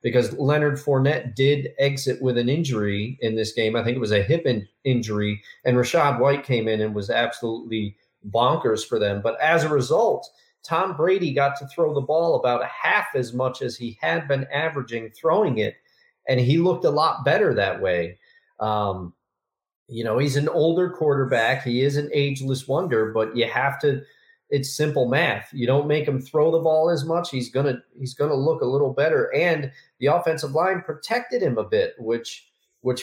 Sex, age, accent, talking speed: male, 40-59, American, 195 wpm